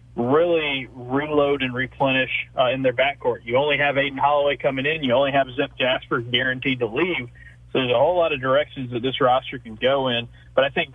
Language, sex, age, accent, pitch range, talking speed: English, male, 30-49, American, 120-140 Hz, 215 wpm